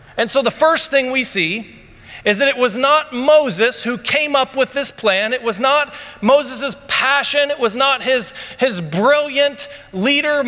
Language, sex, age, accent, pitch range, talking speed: English, male, 40-59, American, 200-275 Hz, 180 wpm